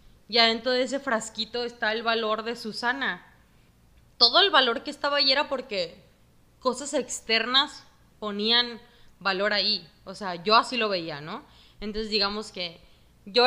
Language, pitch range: Spanish, 195-240 Hz